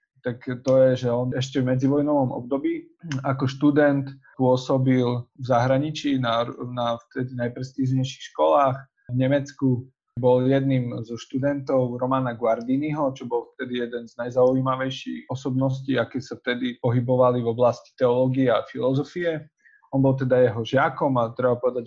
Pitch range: 125-140 Hz